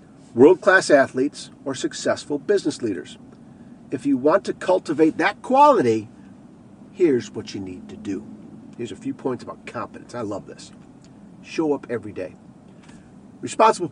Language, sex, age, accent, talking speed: English, male, 50-69, American, 140 wpm